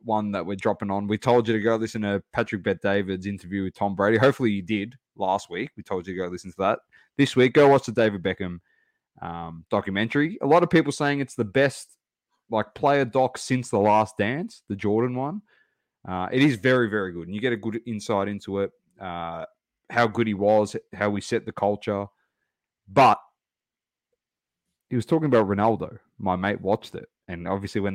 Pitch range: 100-130 Hz